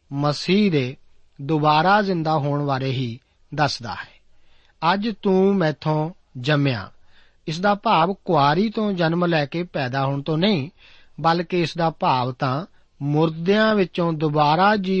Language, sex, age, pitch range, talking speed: Punjabi, male, 40-59, 140-180 Hz, 135 wpm